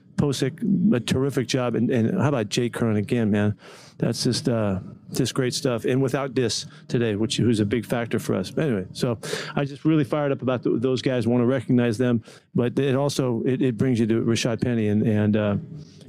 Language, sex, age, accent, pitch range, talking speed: English, male, 40-59, American, 120-145 Hz, 215 wpm